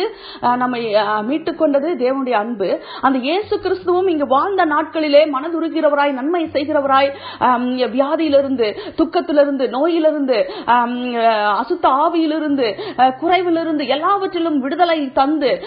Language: Urdu